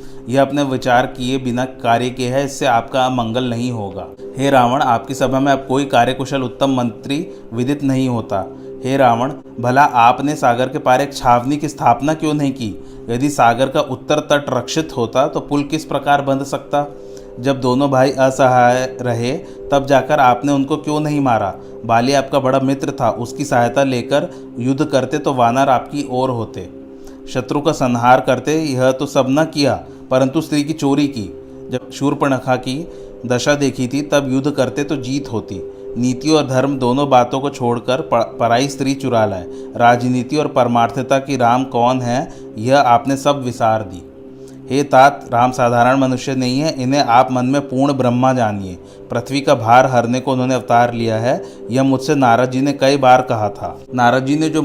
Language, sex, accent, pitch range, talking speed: Hindi, male, native, 120-140 Hz, 180 wpm